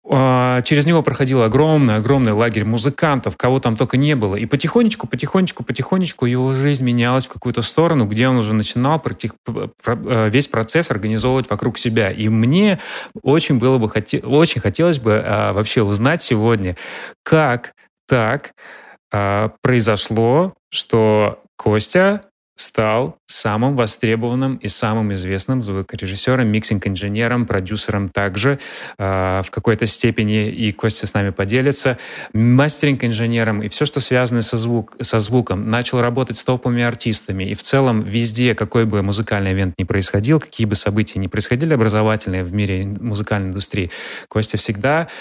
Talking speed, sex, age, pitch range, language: 135 wpm, male, 30-49, 105-130 Hz, Russian